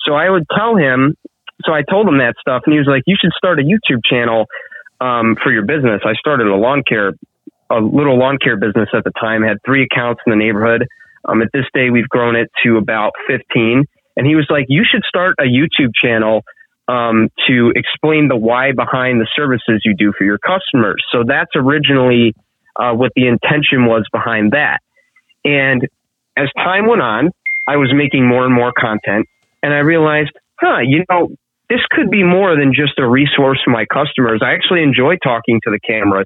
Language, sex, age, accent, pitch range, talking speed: English, male, 20-39, American, 115-140 Hz, 205 wpm